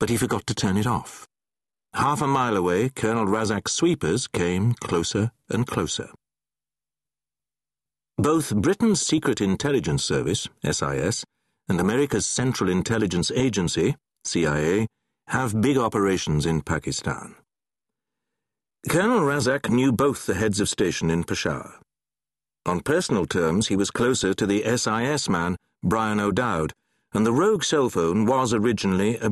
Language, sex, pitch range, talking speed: English, male, 100-130 Hz, 135 wpm